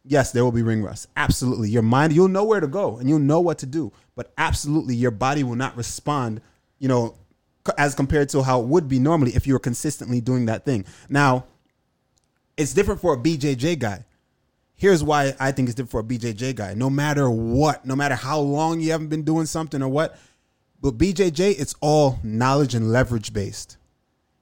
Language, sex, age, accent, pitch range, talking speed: English, male, 20-39, American, 125-155 Hz, 205 wpm